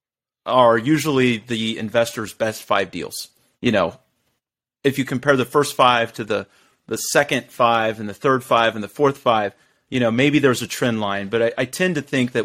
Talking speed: 200 wpm